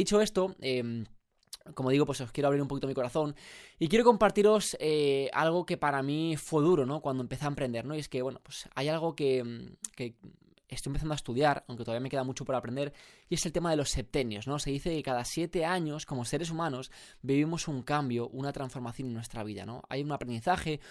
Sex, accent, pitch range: male, Spanish, 120-150 Hz